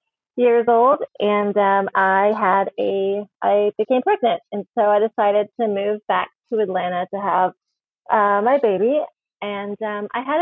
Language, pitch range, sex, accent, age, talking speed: English, 185-235 Hz, female, American, 30-49, 160 wpm